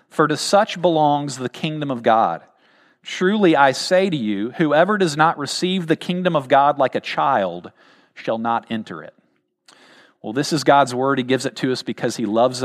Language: English